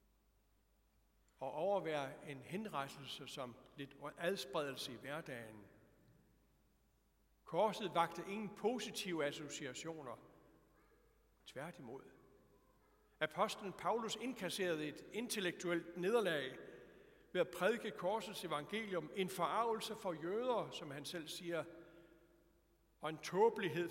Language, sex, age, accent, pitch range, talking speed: Danish, male, 60-79, native, 145-190 Hz, 95 wpm